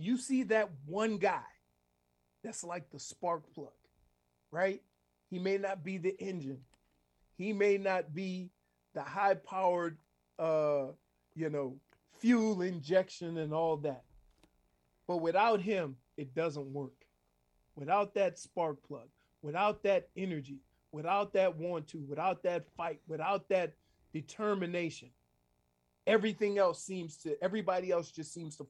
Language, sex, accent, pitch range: English, male, American, 140-210 Hz